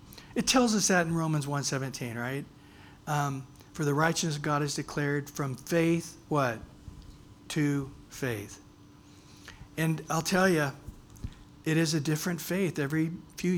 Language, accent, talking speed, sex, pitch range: English, American, 140 wpm, male, 130-160 Hz